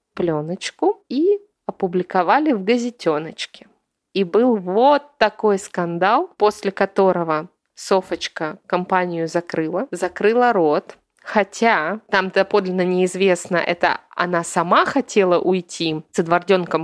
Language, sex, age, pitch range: Russian, female, 20-39, 170-205 Hz